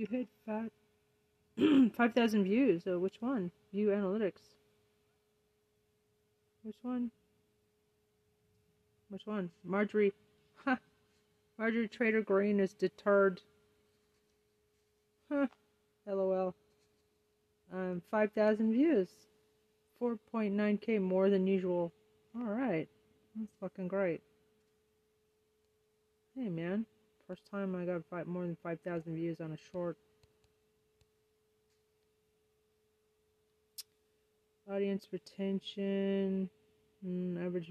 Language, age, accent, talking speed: English, 30-49, American, 80 wpm